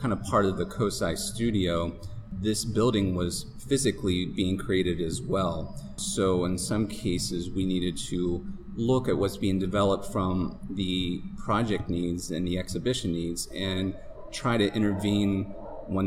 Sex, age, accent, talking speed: male, 30-49, American, 150 wpm